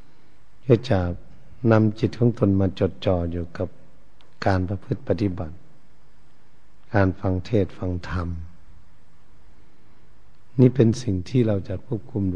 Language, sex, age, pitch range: Thai, male, 60-79, 90-110 Hz